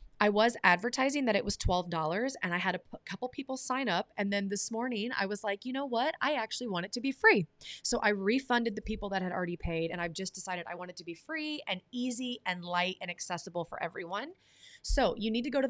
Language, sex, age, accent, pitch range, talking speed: English, female, 30-49, American, 185-235 Hz, 250 wpm